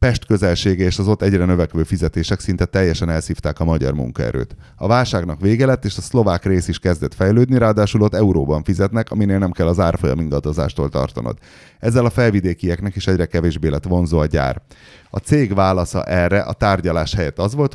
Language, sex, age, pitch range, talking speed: Hungarian, male, 30-49, 80-105 Hz, 185 wpm